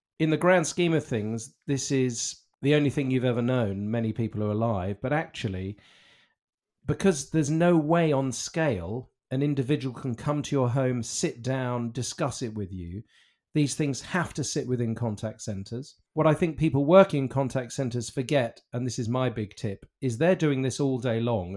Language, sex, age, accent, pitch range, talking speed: English, male, 40-59, British, 120-160 Hz, 190 wpm